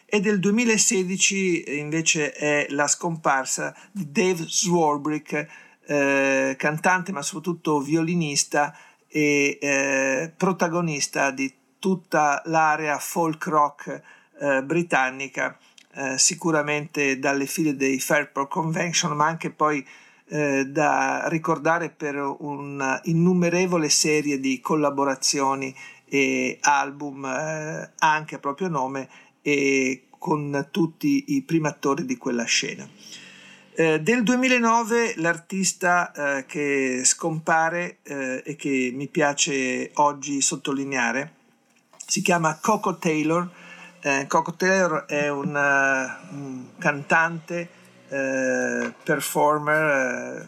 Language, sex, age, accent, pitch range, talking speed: Italian, male, 50-69, native, 140-170 Hz, 100 wpm